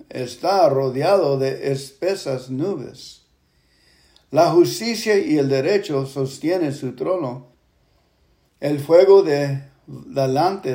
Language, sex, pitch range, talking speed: English, male, 130-175 Hz, 90 wpm